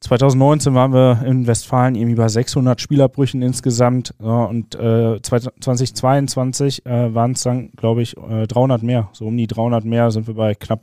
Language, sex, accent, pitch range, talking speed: German, male, German, 120-145 Hz, 175 wpm